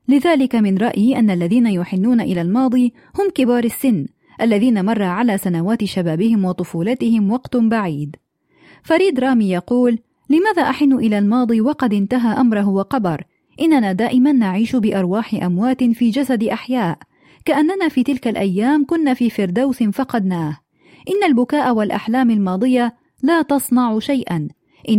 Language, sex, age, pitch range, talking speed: Arabic, female, 30-49, 205-265 Hz, 125 wpm